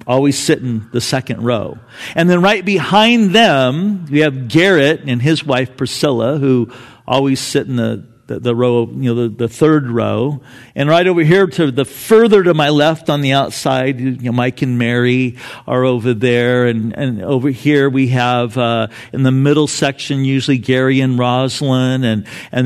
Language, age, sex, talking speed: English, 50-69, male, 185 wpm